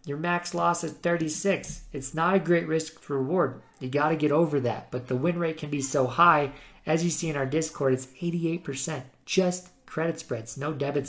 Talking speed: 200 wpm